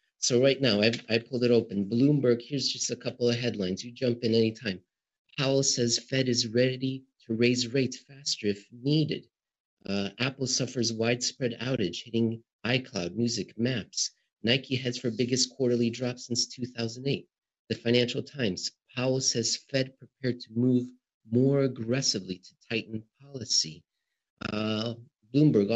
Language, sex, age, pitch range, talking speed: English, male, 40-59, 115-130 Hz, 150 wpm